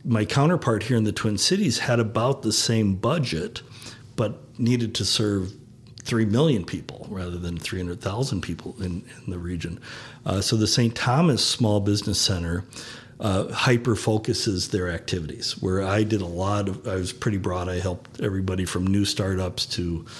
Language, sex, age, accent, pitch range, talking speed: English, male, 50-69, American, 95-125 Hz, 165 wpm